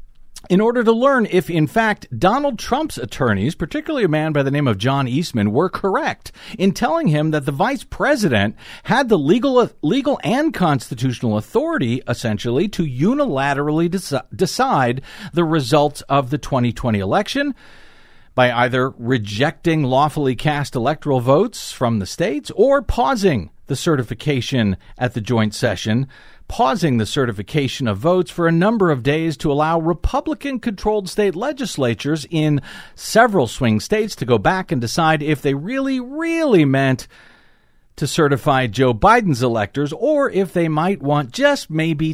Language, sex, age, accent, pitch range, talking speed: English, male, 50-69, American, 125-195 Hz, 150 wpm